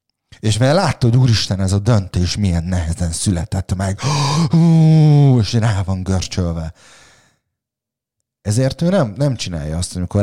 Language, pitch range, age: Hungarian, 95-130 Hz, 30-49